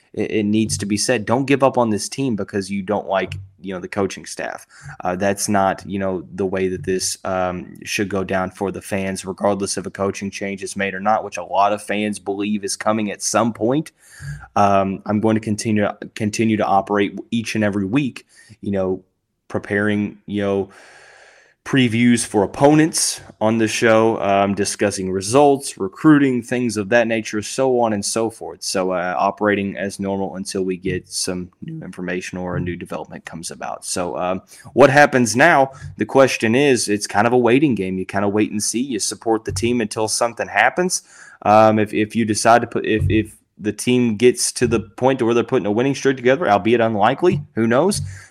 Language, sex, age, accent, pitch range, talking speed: English, male, 20-39, American, 100-115 Hz, 200 wpm